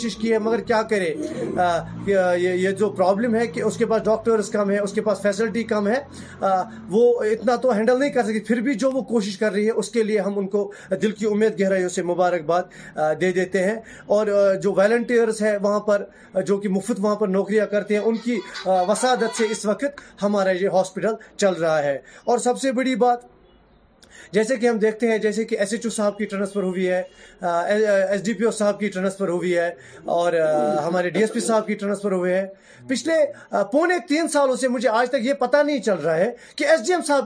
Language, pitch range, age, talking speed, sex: Urdu, 190-240 Hz, 30-49, 215 wpm, male